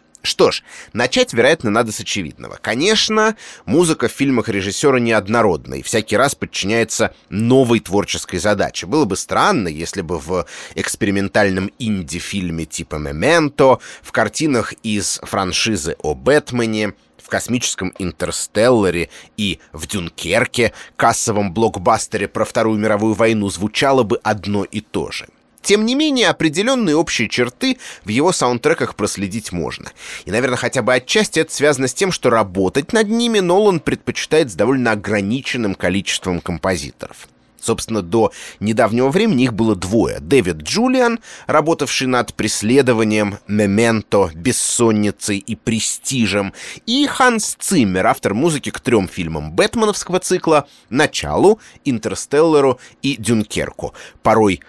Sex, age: male, 30-49